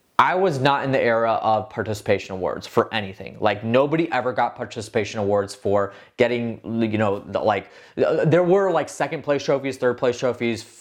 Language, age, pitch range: English, 20-39, 110-150 Hz